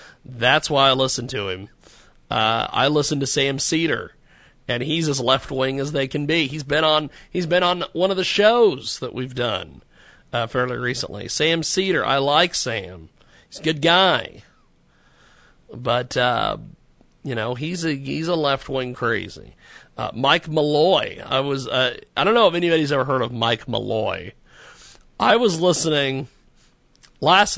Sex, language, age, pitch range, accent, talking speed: male, English, 40-59, 125-165 Hz, American, 170 wpm